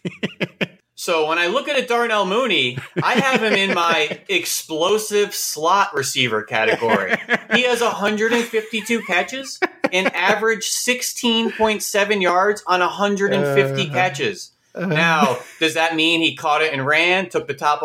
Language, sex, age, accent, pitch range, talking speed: English, male, 30-49, American, 135-210 Hz, 135 wpm